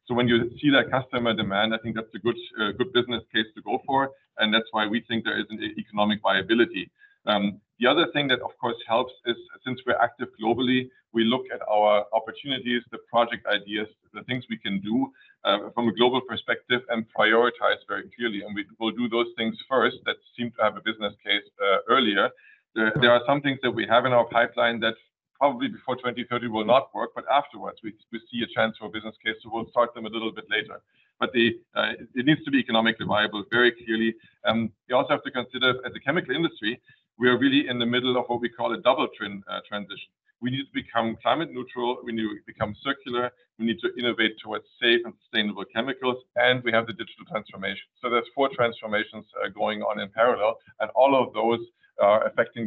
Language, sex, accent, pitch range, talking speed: English, male, German, 110-125 Hz, 220 wpm